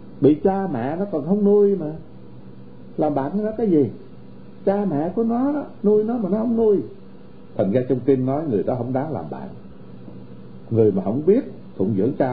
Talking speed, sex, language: 205 wpm, male, Vietnamese